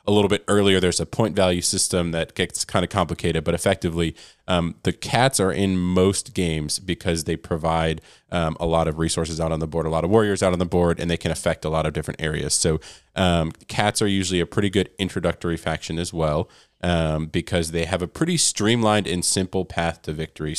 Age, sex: 20-39, male